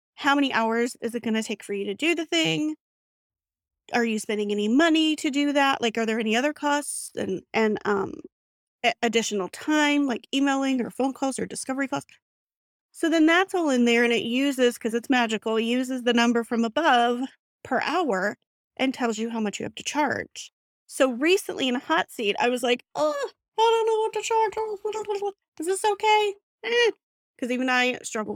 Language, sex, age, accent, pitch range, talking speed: English, female, 30-49, American, 220-285 Hz, 200 wpm